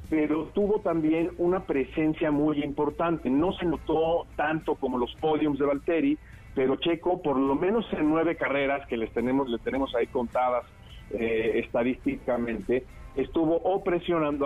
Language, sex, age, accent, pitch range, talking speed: Spanish, male, 50-69, Mexican, 125-165 Hz, 150 wpm